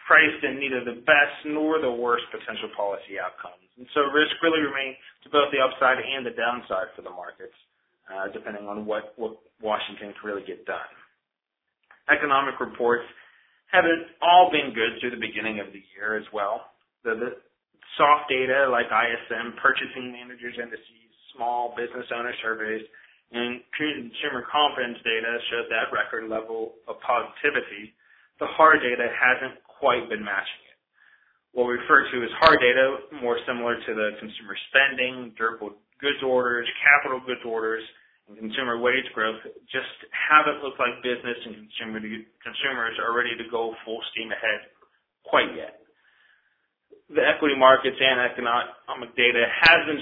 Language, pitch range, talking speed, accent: English, 115-140 Hz, 155 wpm, American